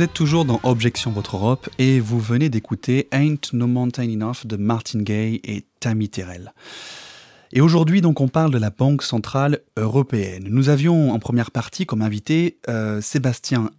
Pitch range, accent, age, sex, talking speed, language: 110-150 Hz, French, 30-49, male, 170 wpm, French